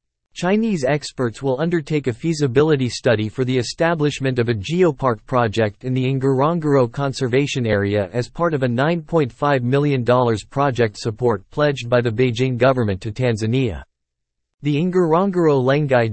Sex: male